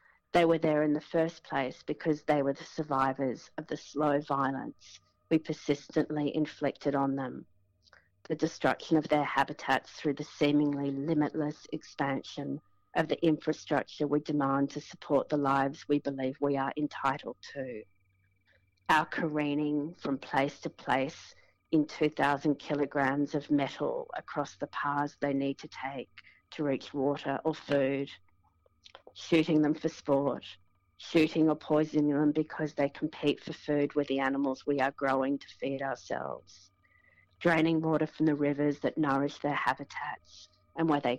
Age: 40-59